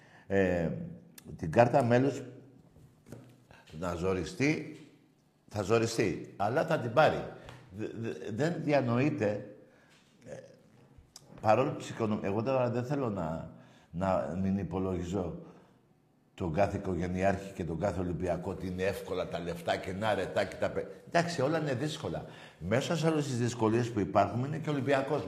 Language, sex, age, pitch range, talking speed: Greek, male, 60-79, 100-140 Hz, 140 wpm